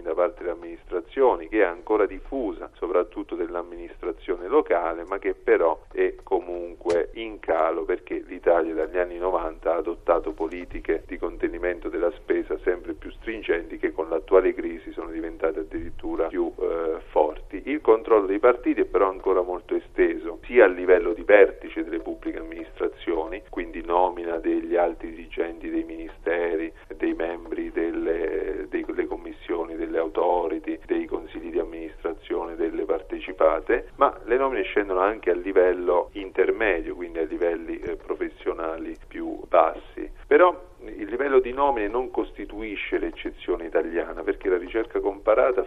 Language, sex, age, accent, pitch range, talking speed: Italian, male, 40-59, native, 335-410 Hz, 140 wpm